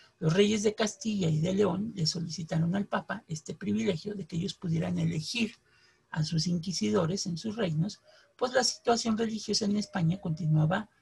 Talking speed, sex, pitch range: 170 wpm, male, 160-205 Hz